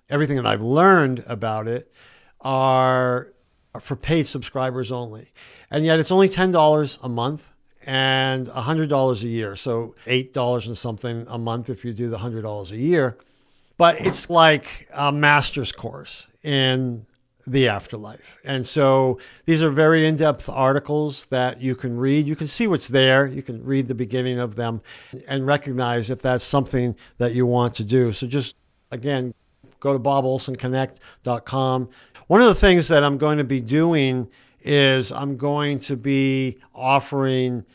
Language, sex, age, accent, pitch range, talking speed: English, male, 50-69, American, 120-140 Hz, 155 wpm